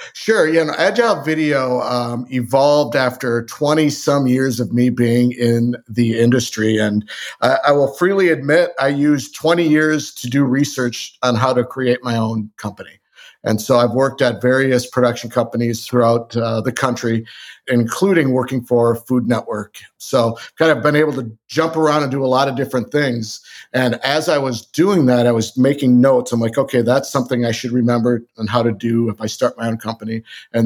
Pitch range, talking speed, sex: 115-135 Hz, 190 wpm, male